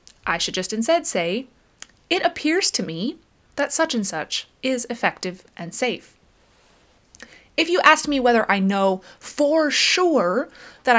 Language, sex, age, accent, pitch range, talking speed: English, female, 20-39, American, 195-275 Hz, 145 wpm